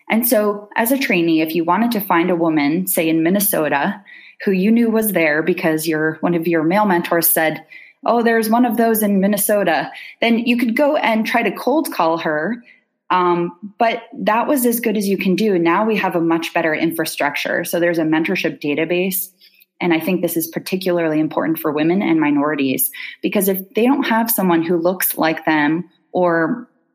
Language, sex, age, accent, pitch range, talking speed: English, female, 20-39, American, 160-210 Hz, 200 wpm